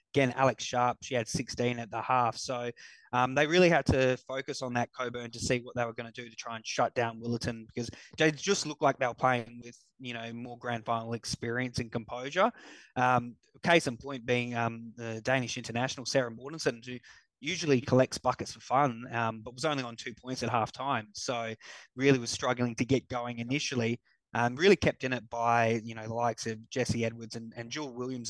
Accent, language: Australian, English